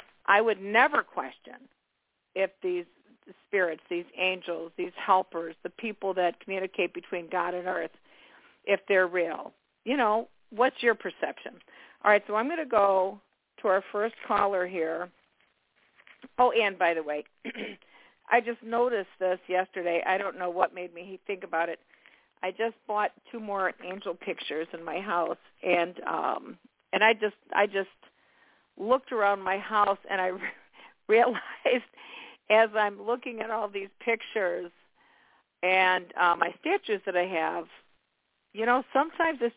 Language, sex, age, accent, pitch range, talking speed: English, female, 50-69, American, 185-240 Hz, 150 wpm